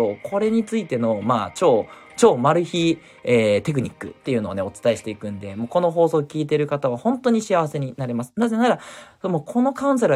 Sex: male